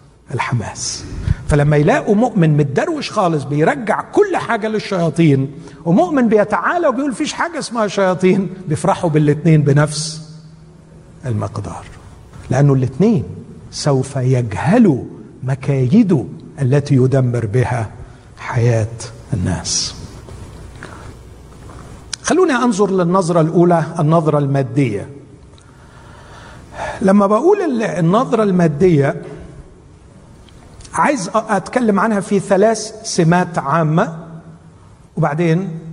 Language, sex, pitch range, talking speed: Arabic, male, 125-190 Hz, 80 wpm